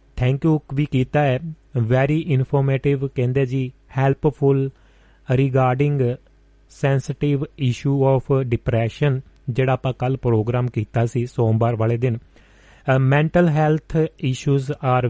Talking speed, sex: 110 wpm, male